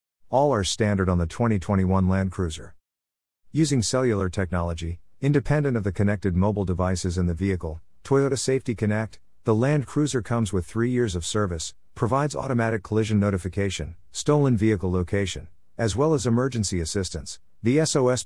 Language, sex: English, male